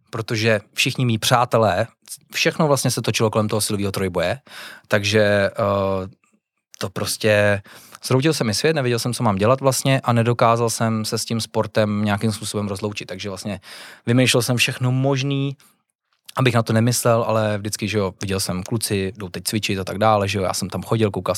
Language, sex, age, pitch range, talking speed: Czech, male, 20-39, 105-120 Hz, 185 wpm